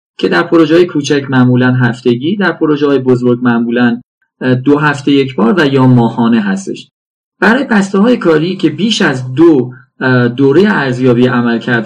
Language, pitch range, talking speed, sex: Persian, 125-180 Hz, 145 wpm, male